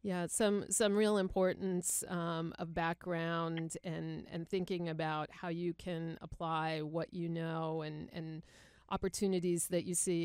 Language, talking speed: English, 145 wpm